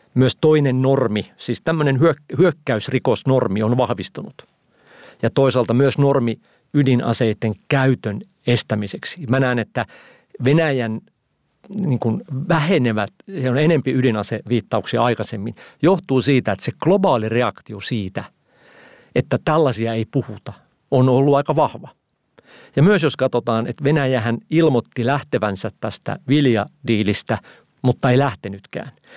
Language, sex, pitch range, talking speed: Finnish, male, 110-135 Hz, 115 wpm